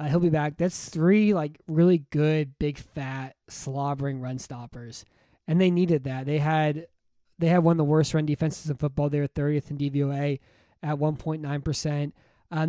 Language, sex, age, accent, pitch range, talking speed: English, male, 20-39, American, 145-165 Hz, 185 wpm